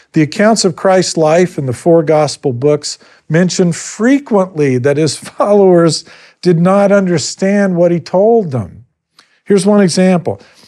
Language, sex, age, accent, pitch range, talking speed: English, male, 50-69, American, 125-185 Hz, 140 wpm